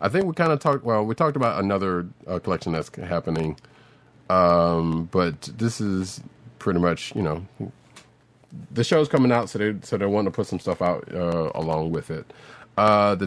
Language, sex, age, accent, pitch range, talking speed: English, male, 30-49, American, 85-120 Hz, 195 wpm